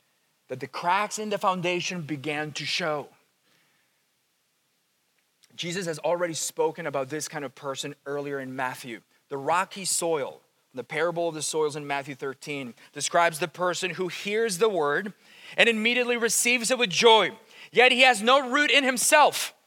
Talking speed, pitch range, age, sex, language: 160 wpm, 185-255 Hz, 30-49, male, English